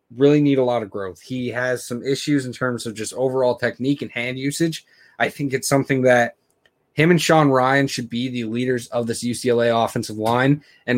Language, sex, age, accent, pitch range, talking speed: English, male, 20-39, American, 115-140 Hz, 210 wpm